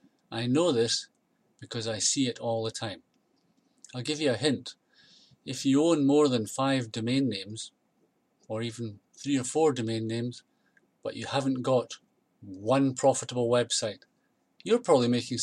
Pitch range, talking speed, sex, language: 125-150 Hz, 155 wpm, male, English